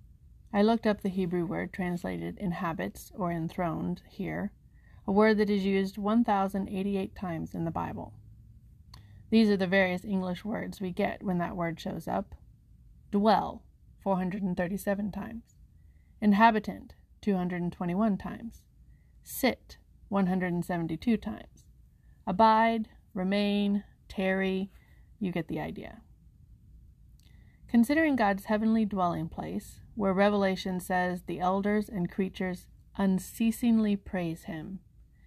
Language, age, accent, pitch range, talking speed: English, 30-49, American, 175-205 Hz, 110 wpm